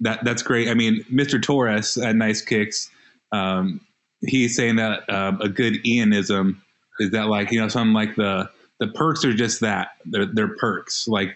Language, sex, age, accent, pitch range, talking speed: English, male, 20-39, American, 95-115 Hz, 185 wpm